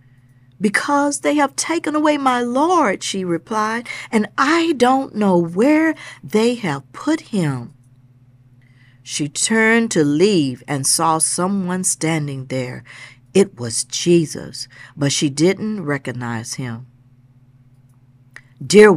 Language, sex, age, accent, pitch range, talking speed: English, female, 50-69, American, 130-210 Hz, 115 wpm